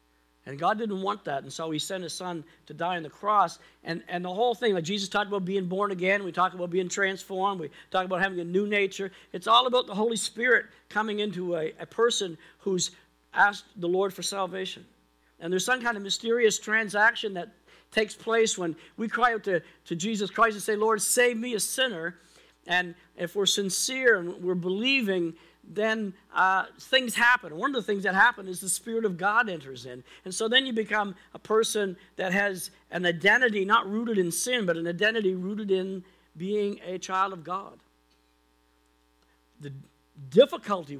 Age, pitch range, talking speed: 50-69, 170-215 Hz, 195 wpm